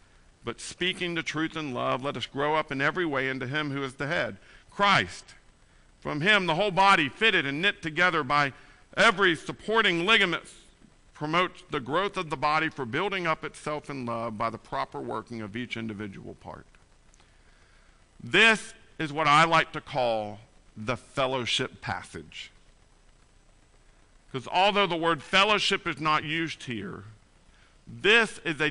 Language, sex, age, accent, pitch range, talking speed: English, male, 50-69, American, 125-185 Hz, 155 wpm